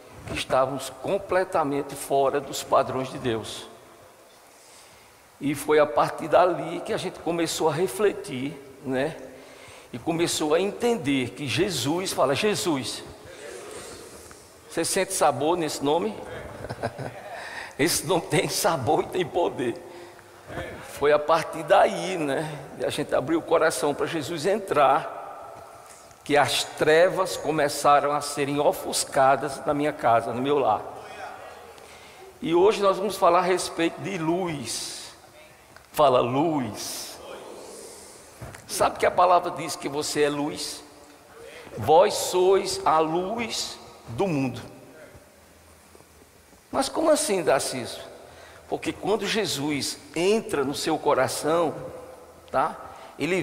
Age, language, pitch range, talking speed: 60-79, Portuguese, 140-200 Hz, 120 wpm